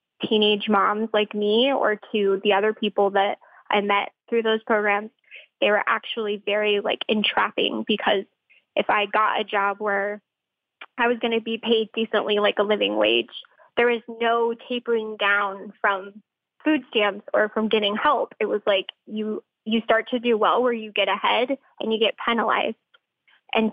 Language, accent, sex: English, American, female